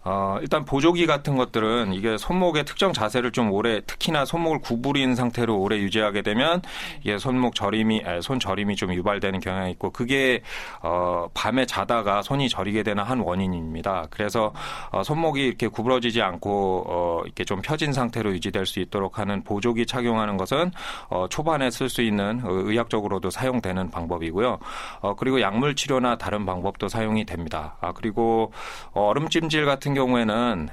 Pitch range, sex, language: 95-125 Hz, male, Korean